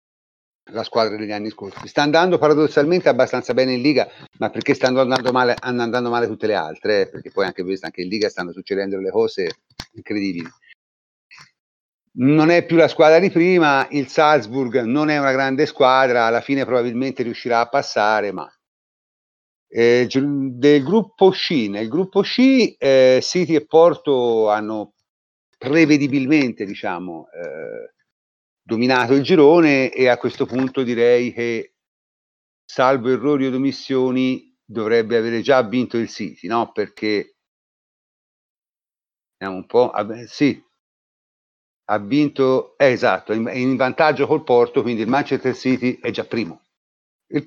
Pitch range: 115-150 Hz